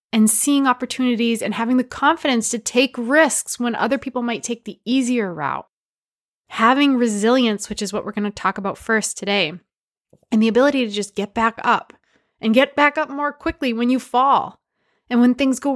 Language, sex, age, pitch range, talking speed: English, female, 20-39, 210-255 Hz, 190 wpm